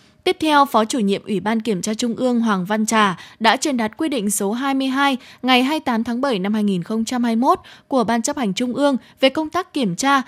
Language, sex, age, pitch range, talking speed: Vietnamese, female, 20-39, 210-275 Hz, 220 wpm